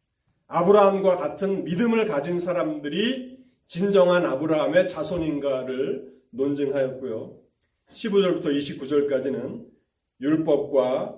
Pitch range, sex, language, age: 135-200 Hz, male, Korean, 40-59